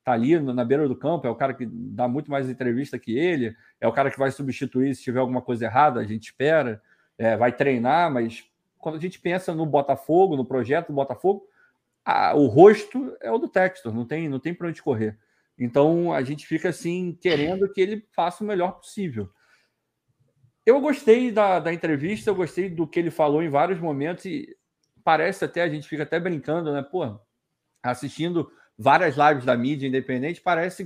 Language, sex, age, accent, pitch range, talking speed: Portuguese, male, 40-59, Brazilian, 130-180 Hz, 200 wpm